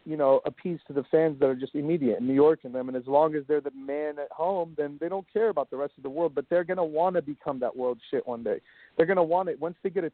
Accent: American